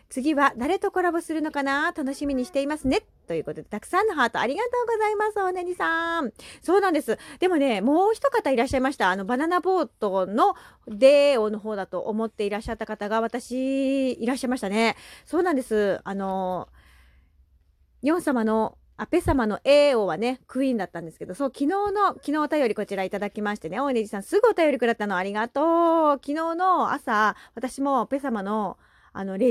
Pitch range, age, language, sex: 200-295 Hz, 30-49, Japanese, female